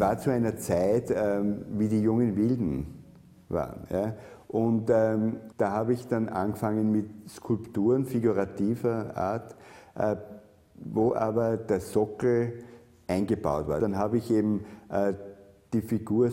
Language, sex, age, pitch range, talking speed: German, male, 50-69, 100-115 Hz, 130 wpm